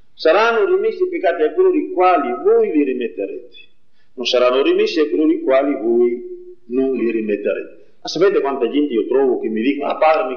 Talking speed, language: 195 wpm, Italian